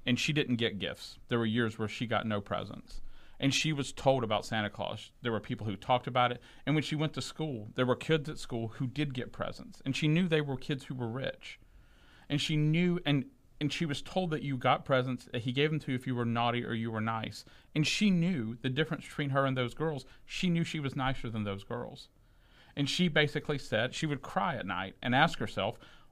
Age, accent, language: 40-59, American, English